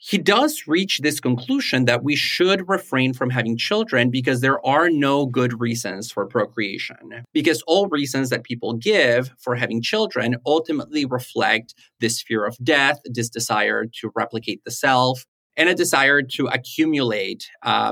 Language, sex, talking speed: English, male, 155 wpm